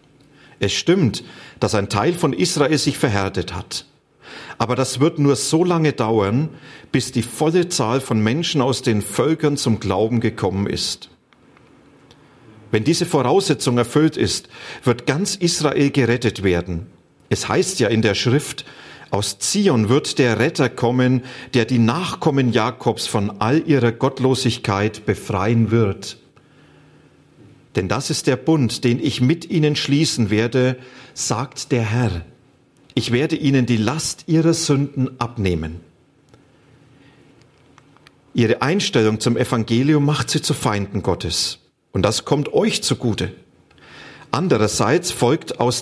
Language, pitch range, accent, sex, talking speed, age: German, 110-145 Hz, German, male, 130 wpm, 40-59